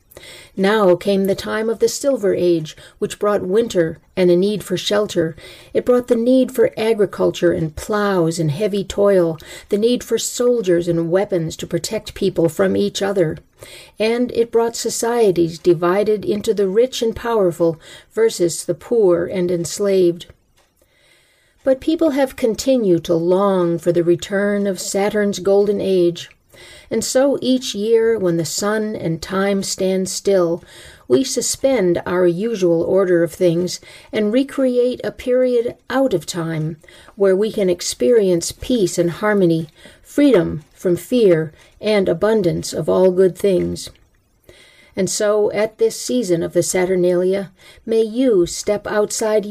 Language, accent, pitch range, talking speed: English, American, 175-225 Hz, 145 wpm